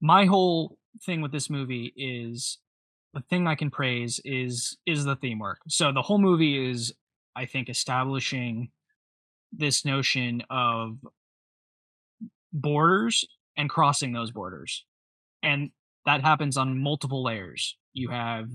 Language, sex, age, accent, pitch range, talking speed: English, male, 20-39, American, 125-150 Hz, 135 wpm